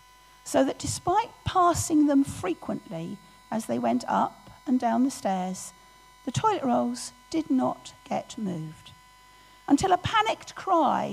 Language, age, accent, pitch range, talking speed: English, 40-59, British, 165-270 Hz, 135 wpm